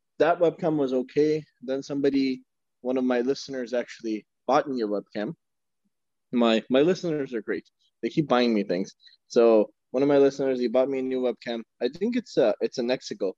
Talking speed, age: 195 wpm, 20-39